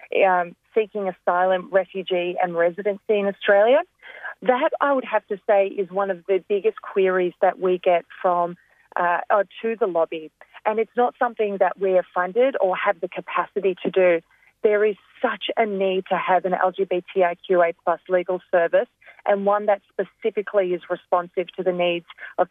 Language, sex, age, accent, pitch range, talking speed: English, female, 30-49, Australian, 180-200 Hz, 175 wpm